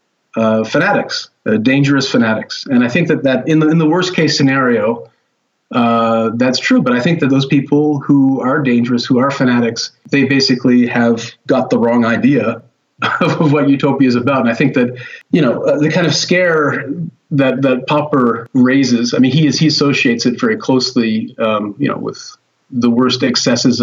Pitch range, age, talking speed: 120-145 Hz, 40-59, 190 wpm